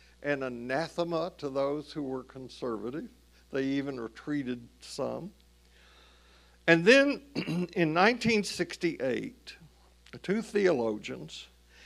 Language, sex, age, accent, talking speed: English, male, 60-79, American, 85 wpm